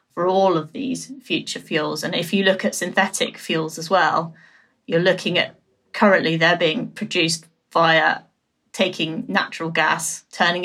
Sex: female